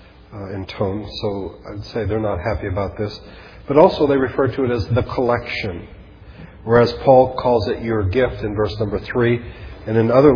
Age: 40-59